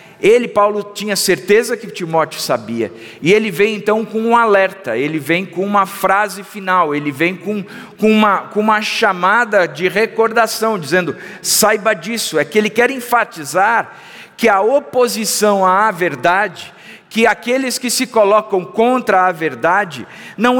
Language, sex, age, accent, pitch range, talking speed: Portuguese, male, 50-69, Brazilian, 205-250 Hz, 145 wpm